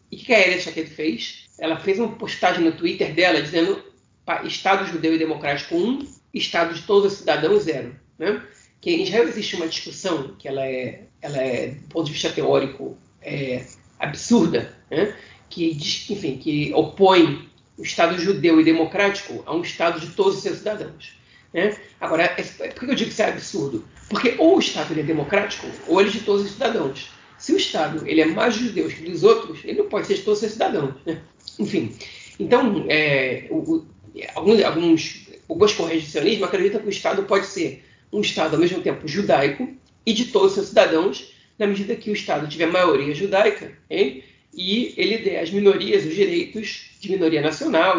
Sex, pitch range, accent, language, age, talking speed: female, 165-250 Hz, Brazilian, Portuguese, 40-59, 190 wpm